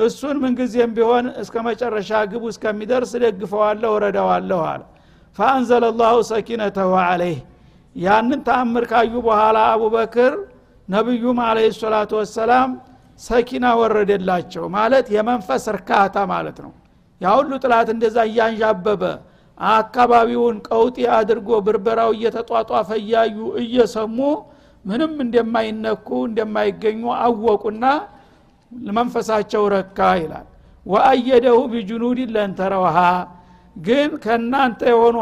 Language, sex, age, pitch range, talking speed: Amharic, male, 60-79, 215-240 Hz, 85 wpm